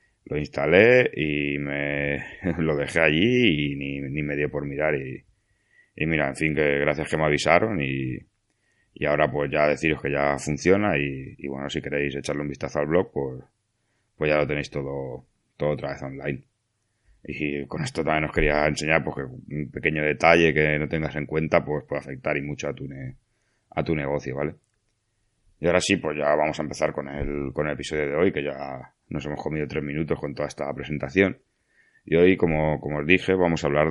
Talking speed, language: 205 wpm, Spanish